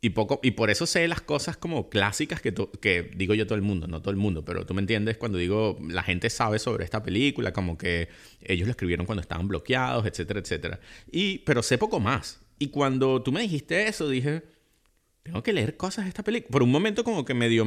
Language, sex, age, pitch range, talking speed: Spanish, male, 30-49, 105-150 Hz, 235 wpm